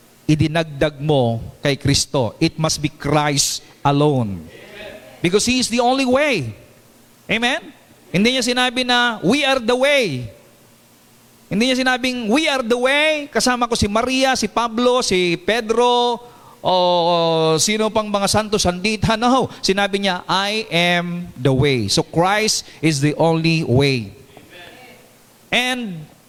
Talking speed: 135 wpm